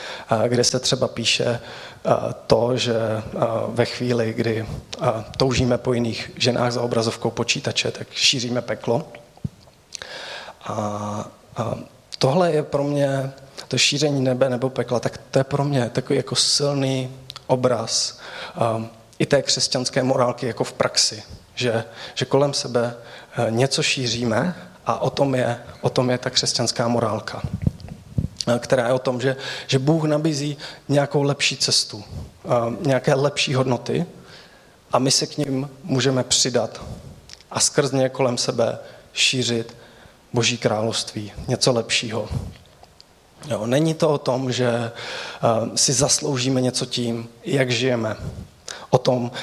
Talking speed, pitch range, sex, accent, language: 125 wpm, 120-135 Hz, male, native, Czech